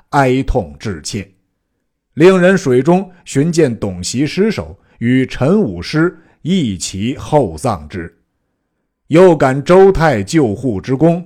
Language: Chinese